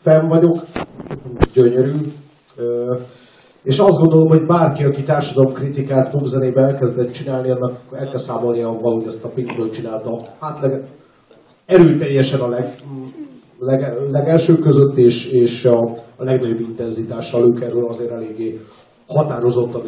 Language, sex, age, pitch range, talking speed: Hungarian, male, 30-49, 120-140 Hz, 125 wpm